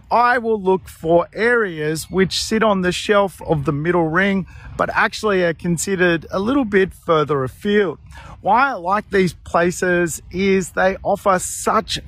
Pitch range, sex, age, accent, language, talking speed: 150-195 Hz, male, 40-59, Australian, English, 160 wpm